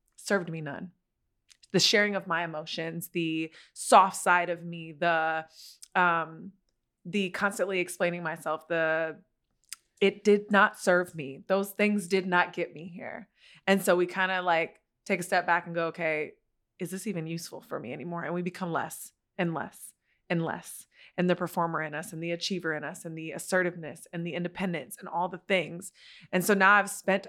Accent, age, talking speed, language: American, 20-39, 185 wpm, English